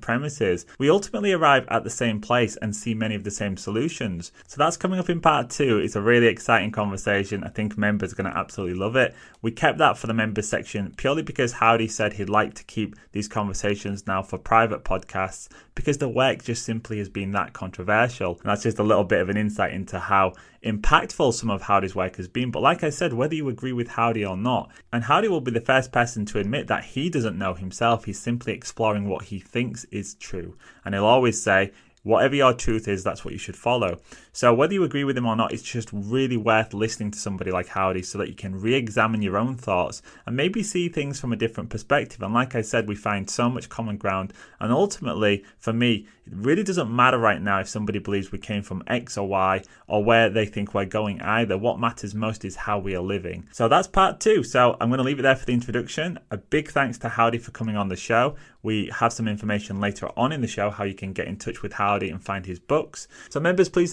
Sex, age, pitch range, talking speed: male, 20-39, 100-120 Hz, 240 wpm